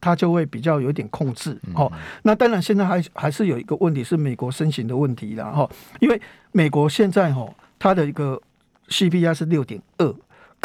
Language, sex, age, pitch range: Chinese, male, 60-79, 145-190 Hz